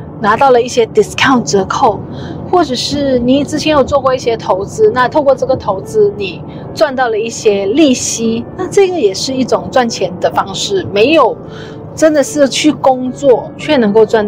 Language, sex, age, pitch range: Chinese, female, 30-49, 215-300 Hz